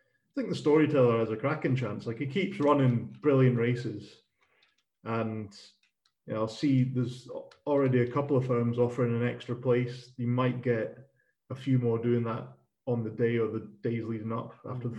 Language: English